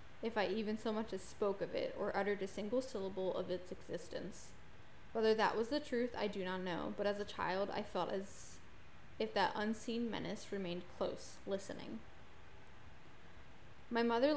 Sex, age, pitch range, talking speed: female, 10-29, 190-225 Hz, 175 wpm